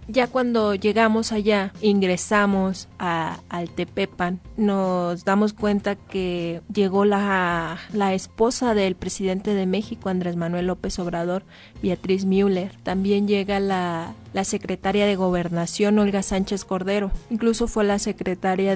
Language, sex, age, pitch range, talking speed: Spanish, female, 30-49, 185-205 Hz, 125 wpm